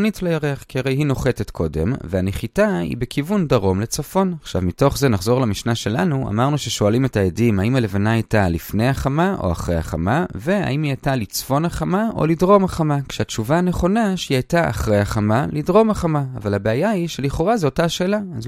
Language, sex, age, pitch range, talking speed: Hebrew, male, 30-49, 105-170 Hz, 165 wpm